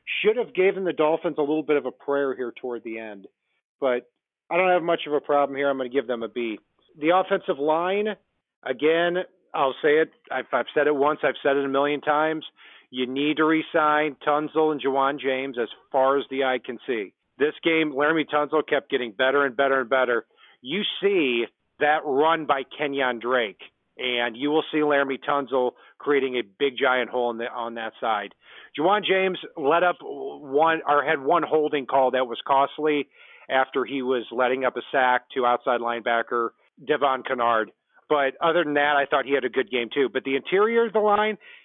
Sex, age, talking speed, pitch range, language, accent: male, 40-59, 200 wpm, 130-155 Hz, English, American